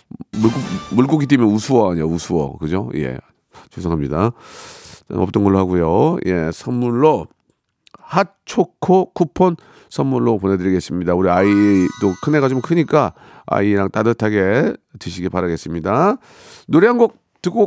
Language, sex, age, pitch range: Korean, male, 40-59, 95-155 Hz